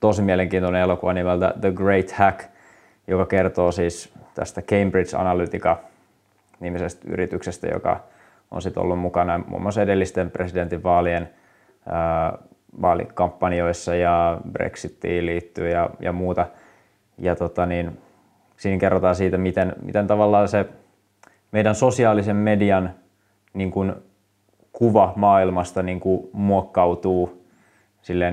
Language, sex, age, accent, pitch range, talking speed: Finnish, male, 20-39, native, 90-100 Hz, 110 wpm